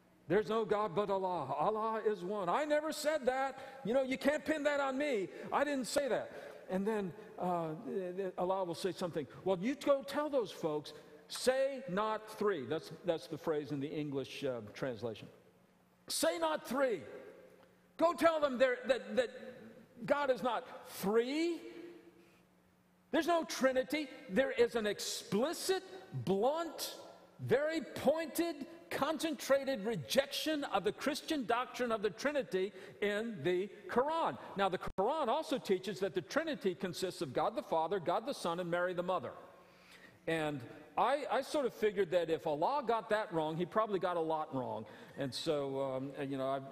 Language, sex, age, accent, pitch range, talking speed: English, male, 50-69, American, 160-265 Hz, 165 wpm